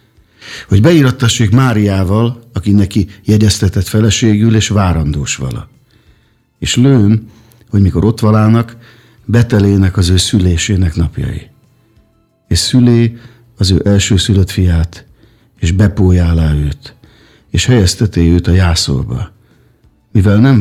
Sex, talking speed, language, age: male, 110 wpm, Hungarian, 50-69